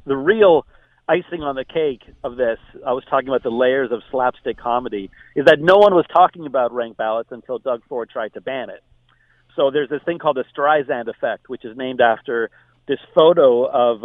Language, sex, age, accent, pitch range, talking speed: English, male, 40-59, American, 130-175 Hz, 205 wpm